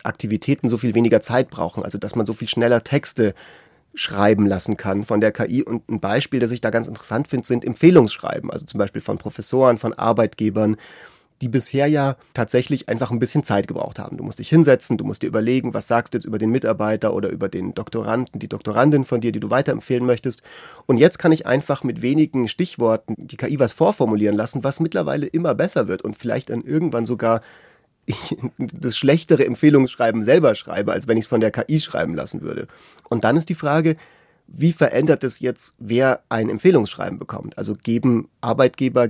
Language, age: German, 30-49